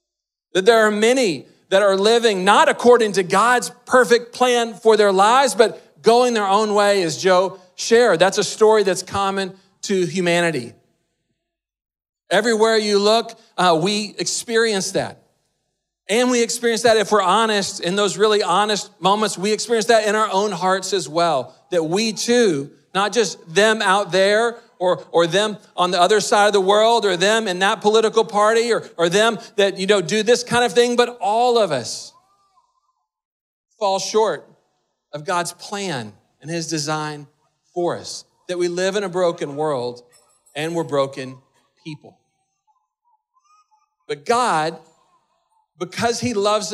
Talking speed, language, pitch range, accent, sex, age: 160 wpm, English, 180-230 Hz, American, male, 40-59